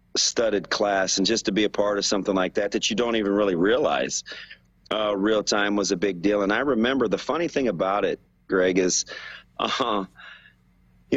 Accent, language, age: American, English, 40-59